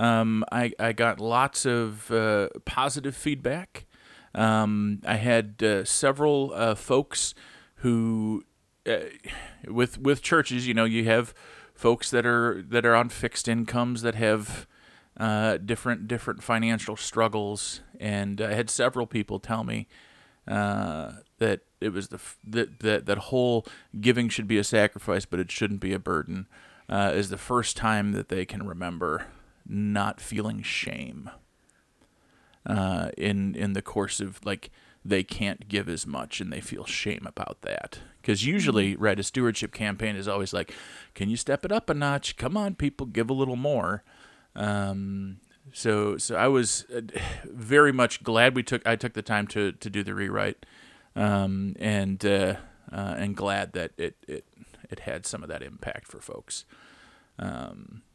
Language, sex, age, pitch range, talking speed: English, male, 40-59, 100-120 Hz, 160 wpm